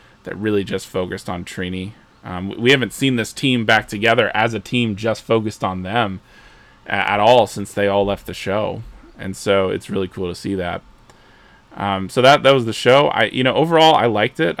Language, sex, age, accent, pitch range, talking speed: English, male, 20-39, American, 95-110 Hz, 210 wpm